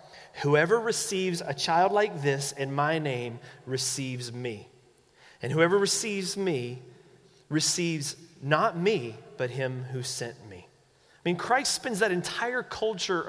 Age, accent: 30-49, American